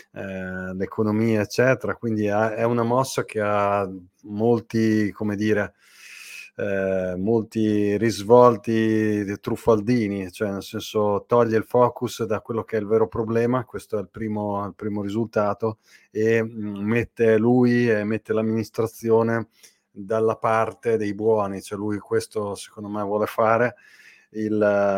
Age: 30-49